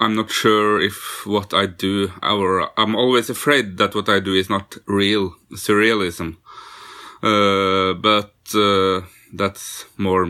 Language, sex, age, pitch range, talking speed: German, male, 30-49, 100-110 Hz, 140 wpm